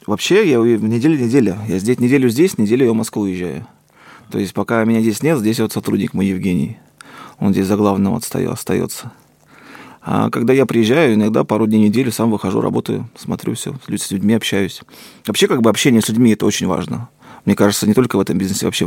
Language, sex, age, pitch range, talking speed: Russian, male, 30-49, 100-125 Hz, 195 wpm